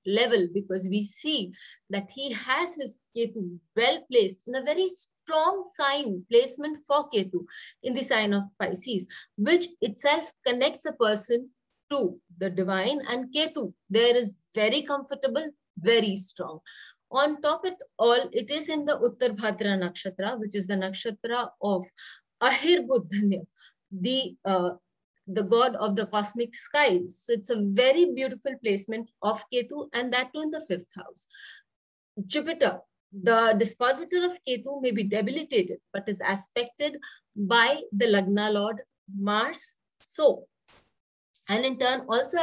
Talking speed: 145 wpm